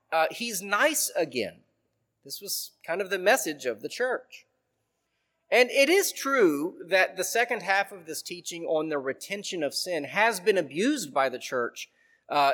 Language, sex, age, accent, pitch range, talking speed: English, male, 30-49, American, 165-240 Hz, 170 wpm